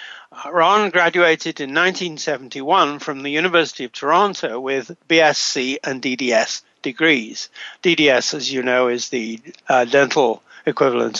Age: 60-79